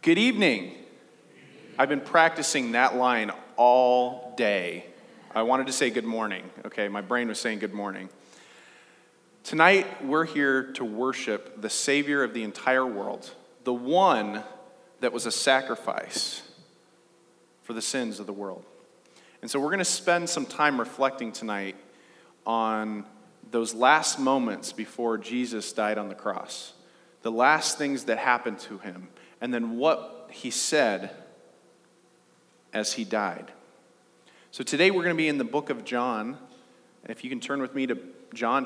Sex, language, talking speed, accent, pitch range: male, English, 155 wpm, American, 115-150 Hz